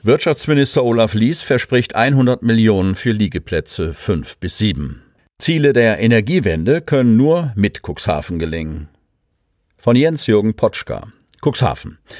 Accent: German